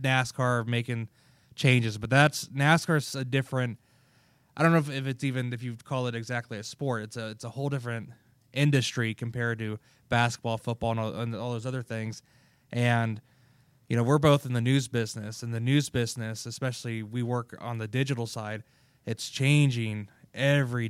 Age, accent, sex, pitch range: 20-39, American, male, 115-135 Hz